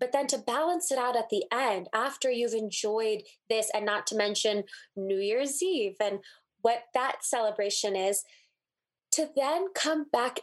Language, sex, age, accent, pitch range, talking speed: English, female, 20-39, American, 200-245 Hz, 165 wpm